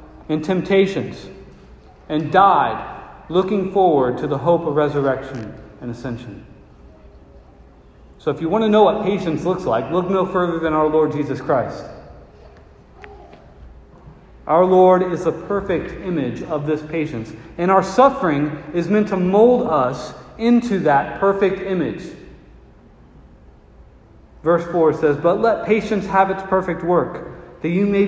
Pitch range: 125-185 Hz